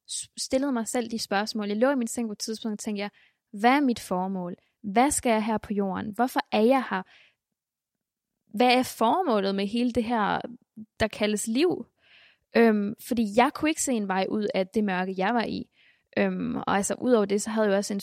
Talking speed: 220 wpm